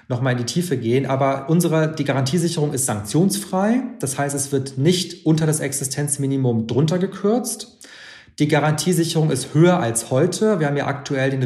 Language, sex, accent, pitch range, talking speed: German, male, German, 135-170 Hz, 175 wpm